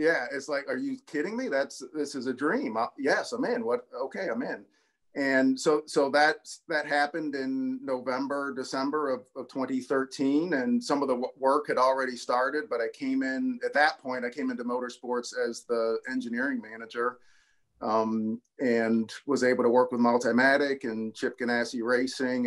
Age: 40-59